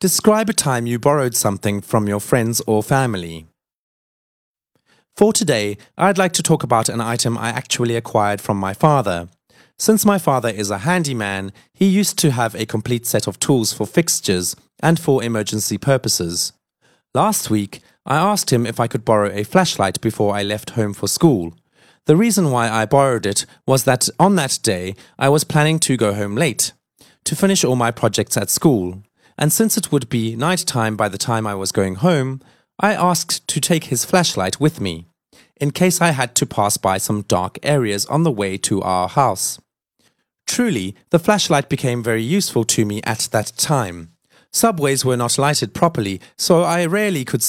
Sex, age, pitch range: male, 30-49, 105-160 Hz